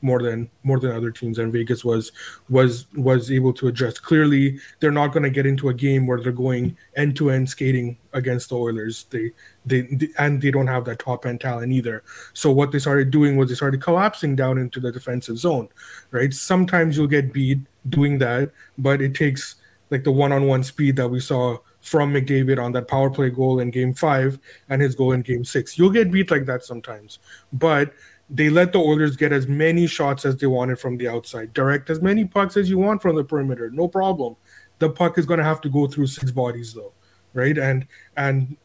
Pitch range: 125-150 Hz